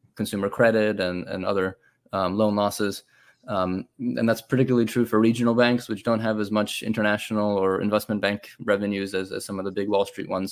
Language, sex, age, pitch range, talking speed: English, male, 20-39, 100-115 Hz, 200 wpm